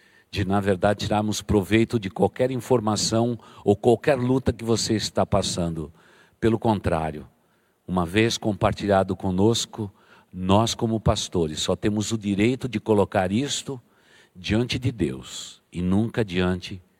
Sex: male